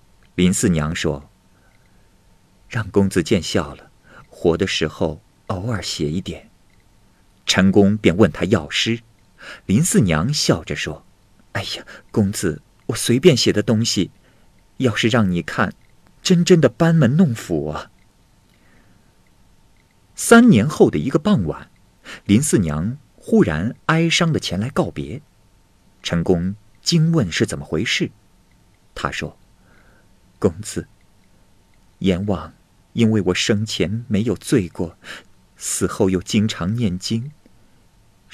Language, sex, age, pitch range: Chinese, male, 50-69, 90-115 Hz